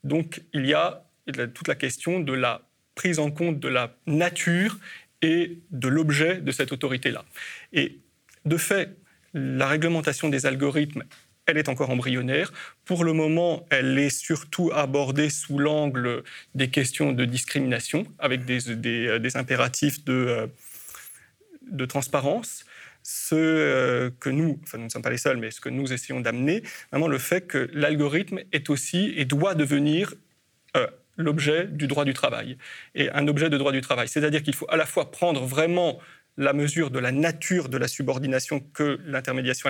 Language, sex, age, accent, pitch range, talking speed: French, male, 30-49, French, 135-165 Hz, 165 wpm